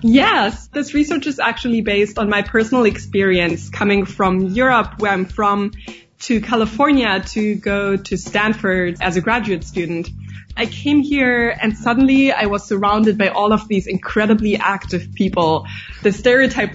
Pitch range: 185-230 Hz